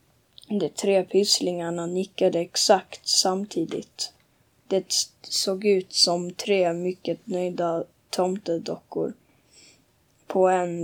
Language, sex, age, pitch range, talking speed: Swedish, female, 10-29, 175-195 Hz, 90 wpm